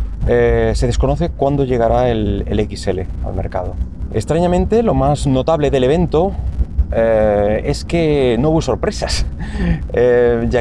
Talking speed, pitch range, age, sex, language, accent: 135 wpm, 95-135 Hz, 30-49, male, Spanish, Spanish